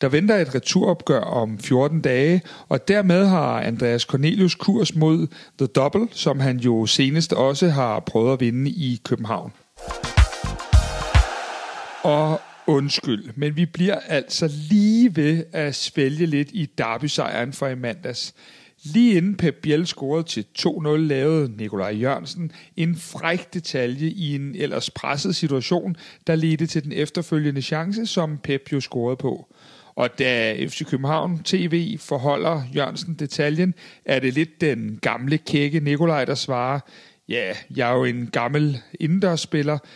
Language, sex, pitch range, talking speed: Danish, male, 135-165 Hz, 145 wpm